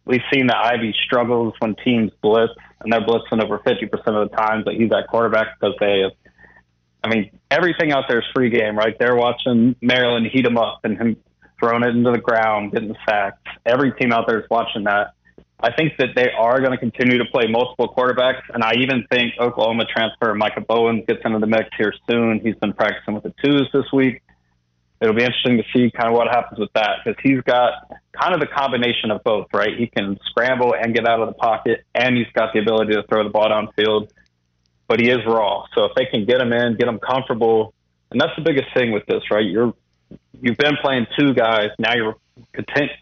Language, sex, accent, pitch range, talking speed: English, male, American, 105-125 Hz, 220 wpm